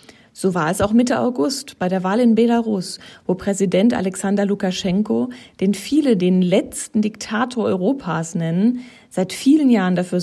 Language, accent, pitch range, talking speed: German, German, 185-230 Hz, 155 wpm